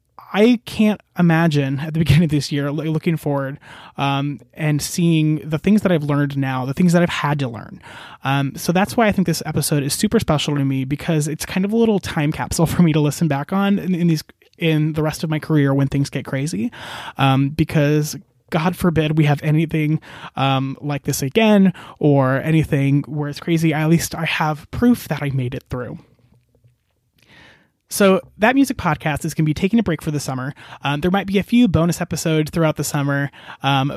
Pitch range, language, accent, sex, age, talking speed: 140-175 Hz, English, American, male, 20-39, 210 wpm